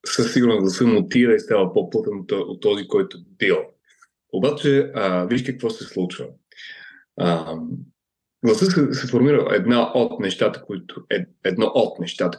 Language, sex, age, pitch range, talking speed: Bulgarian, male, 30-49, 115-170 Hz, 145 wpm